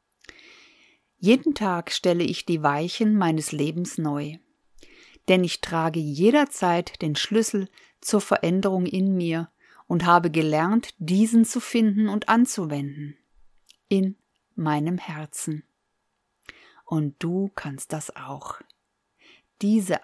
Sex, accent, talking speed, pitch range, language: female, German, 110 wpm, 165-225 Hz, German